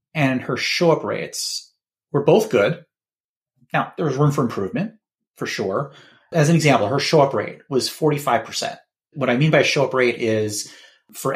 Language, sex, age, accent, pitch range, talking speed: English, male, 30-49, American, 115-155 Hz, 165 wpm